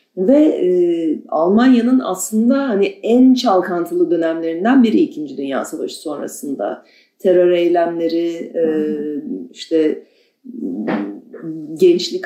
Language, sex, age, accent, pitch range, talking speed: Turkish, female, 40-59, native, 170-275 Hz, 90 wpm